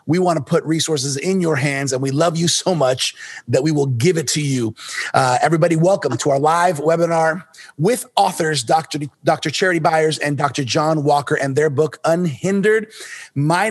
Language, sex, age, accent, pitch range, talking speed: English, male, 30-49, American, 145-175 Hz, 185 wpm